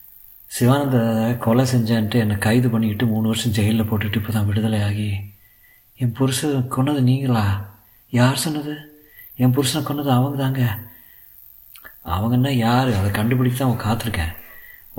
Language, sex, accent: Tamil, male, native